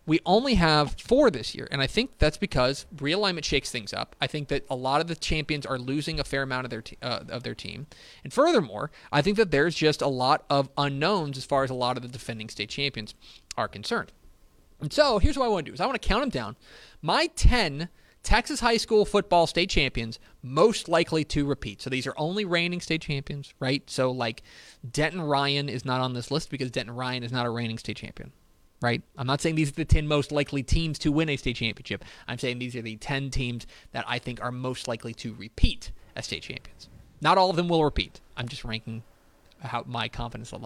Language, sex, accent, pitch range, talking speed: English, male, American, 125-170 Hz, 230 wpm